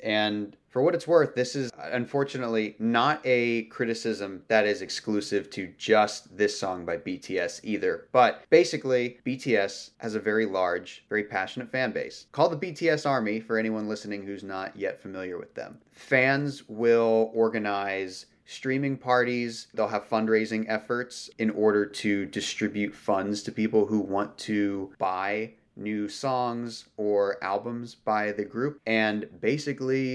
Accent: American